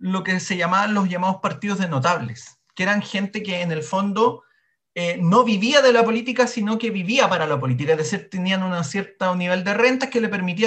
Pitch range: 170-230 Hz